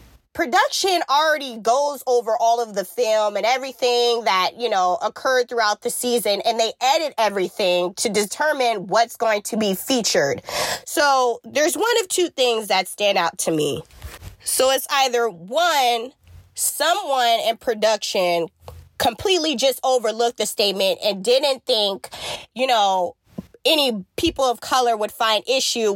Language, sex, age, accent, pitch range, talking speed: English, female, 20-39, American, 200-260 Hz, 145 wpm